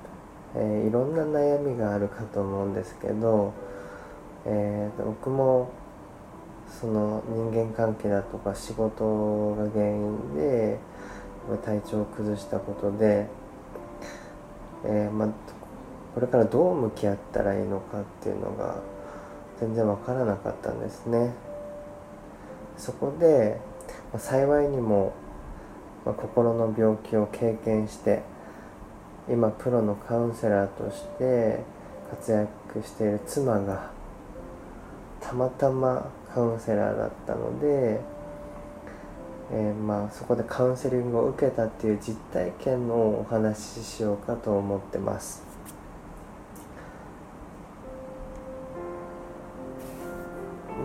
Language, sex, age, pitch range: Japanese, male, 20-39, 100-115 Hz